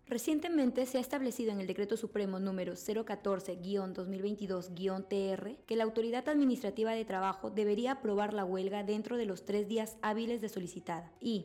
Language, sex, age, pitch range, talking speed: Spanish, female, 20-39, 195-240 Hz, 150 wpm